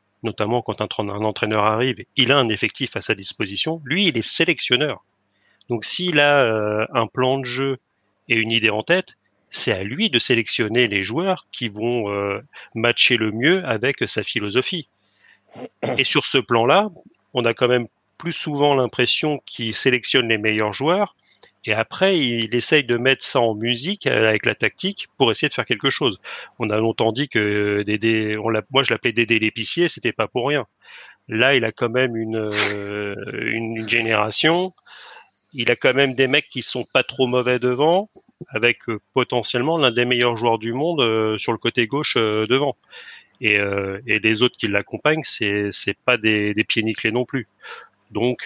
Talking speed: 185 wpm